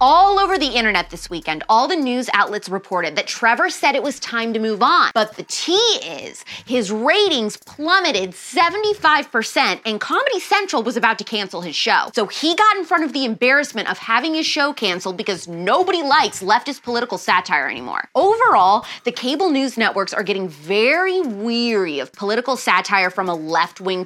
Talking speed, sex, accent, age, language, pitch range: 180 wpm, female, American, 20-39, English, 190-285 Hz